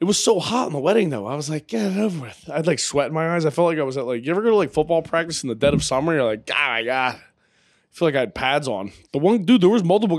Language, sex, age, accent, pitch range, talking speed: English, male, 20-39, American, 125-160 Hz, 360 wpm